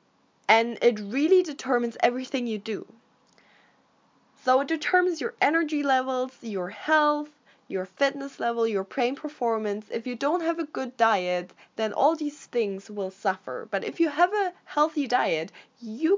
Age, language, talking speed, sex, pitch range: 20-39, English, 155 wpm, female, 210-280 Hz